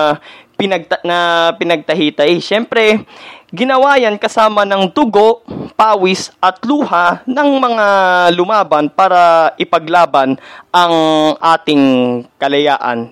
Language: Filipino